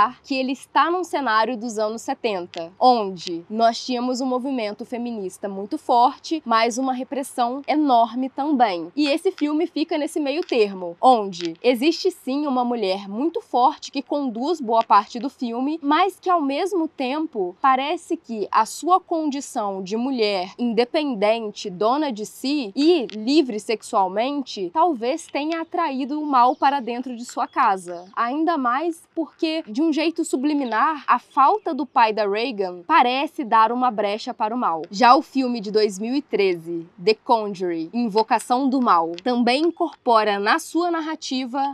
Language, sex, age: Portuguese, female, 10-29